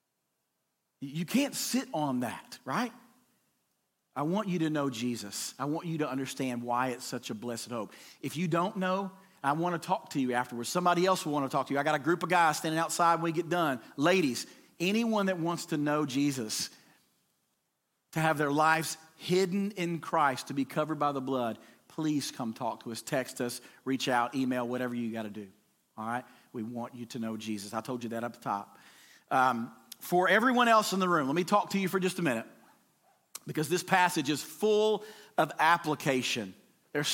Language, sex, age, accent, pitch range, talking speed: English, male, 40-59, American, 130-190 Hz, 205 wpm